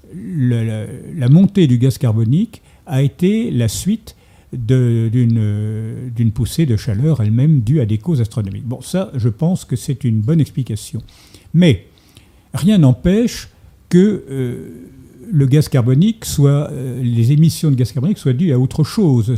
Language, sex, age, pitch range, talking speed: French, male, 50-69, 110-150 Hz, 140 wpm